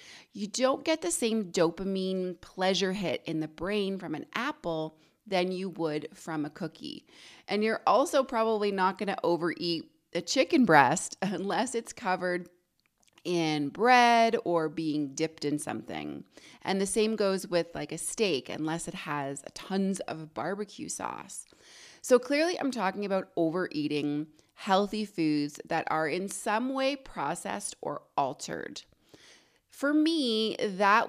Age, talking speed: 30-49, 145 wpm